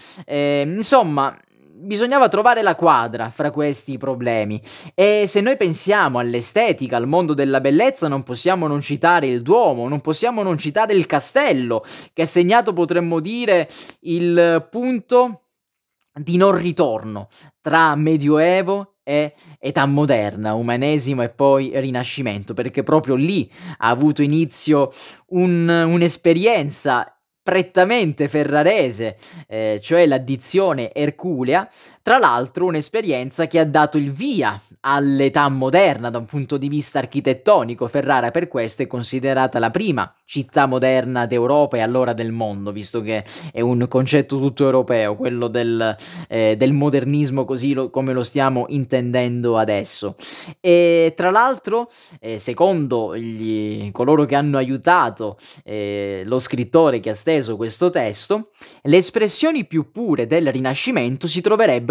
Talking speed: 135 wpm